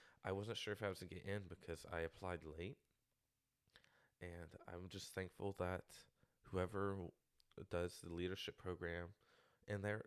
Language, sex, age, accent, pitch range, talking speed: English, male, 20-39, American, 85-100 Hz, 155 wpm